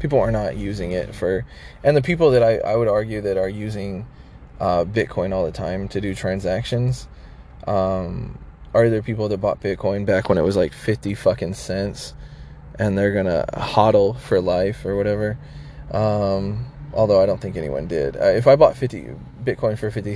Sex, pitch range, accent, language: male, 95-120 Hz, American, English